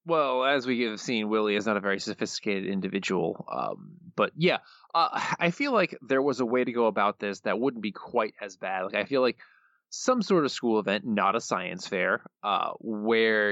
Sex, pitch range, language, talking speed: male, 105-130 Hz, English, 215 wpm